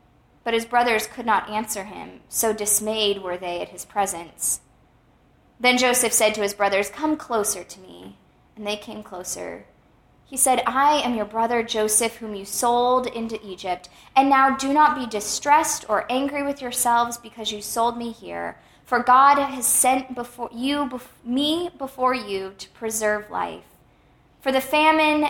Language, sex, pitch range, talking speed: English, female, 210-260 Hz, 165 wpm